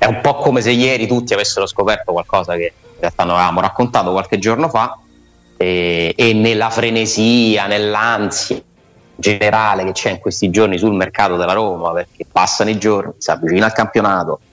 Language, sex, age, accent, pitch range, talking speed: Italian, male, 30-49, native, 90-115 Hz, 170 wpm